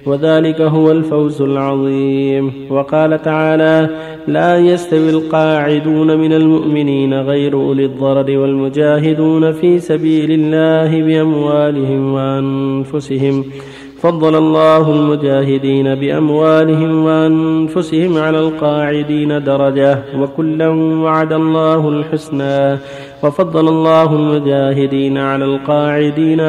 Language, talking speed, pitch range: Arabic, 85 wpm, 135-160 Hz